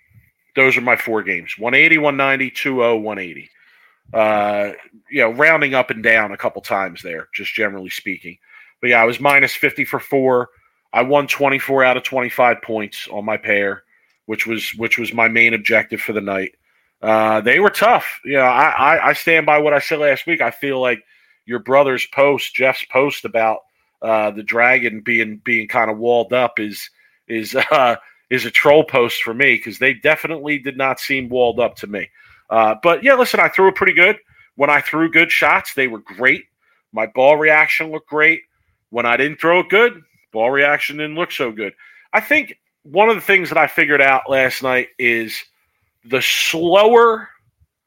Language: English